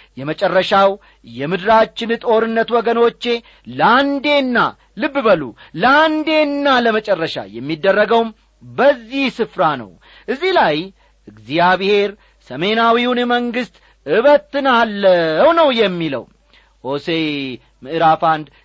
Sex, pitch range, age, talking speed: male, 175-240 Hz, 40-59, 75 wpm